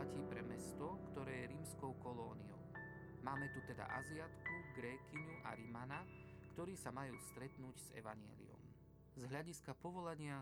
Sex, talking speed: male, 125 wpm